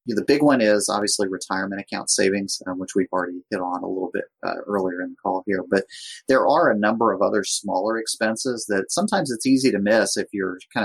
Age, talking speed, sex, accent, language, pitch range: 30-49, 225 wpm, male, American, English, 95-110 Hz